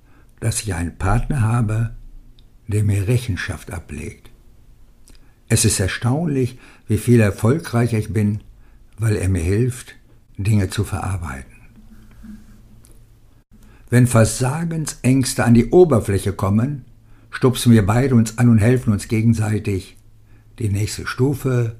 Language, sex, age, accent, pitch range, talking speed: German, male, 60-79, German, 100-115 Hz, 115 wpm